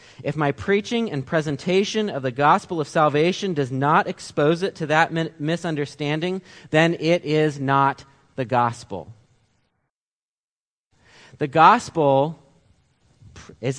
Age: 30-49